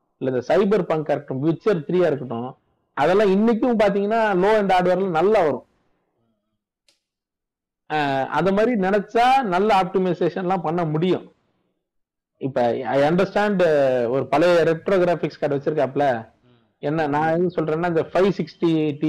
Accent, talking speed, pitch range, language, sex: native, 105 wpm, 125-180 Hz, Tamil, male